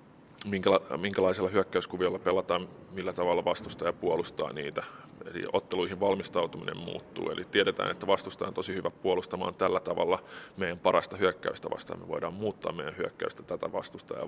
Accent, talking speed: native, 140 wpm